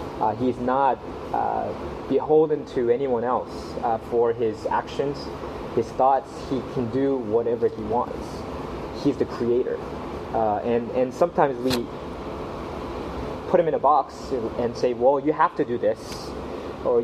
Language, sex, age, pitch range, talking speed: English, male, 20-39, 110-145 Hz, 150 wpm